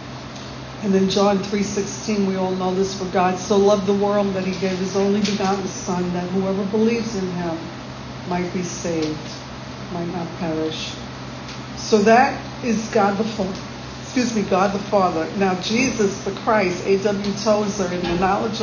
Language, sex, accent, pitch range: English, female, American, 175-205 Hz